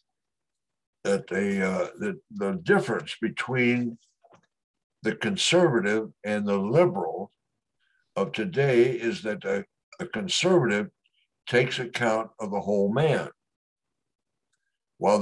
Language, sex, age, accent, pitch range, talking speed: English, male, 60-79, American, 110-175 Hz, 100 wpm